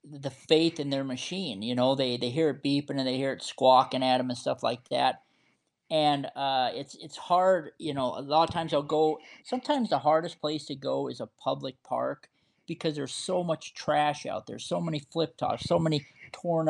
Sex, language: male, English